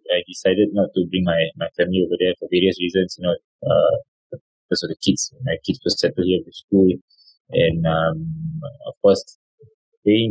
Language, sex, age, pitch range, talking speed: English, male, 20-39, 90-105 Hz, 185 wpm